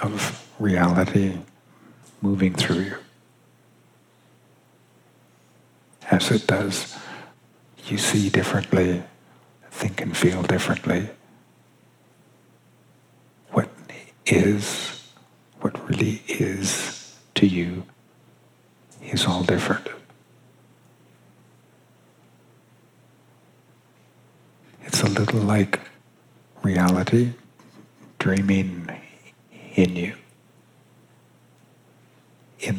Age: 50-69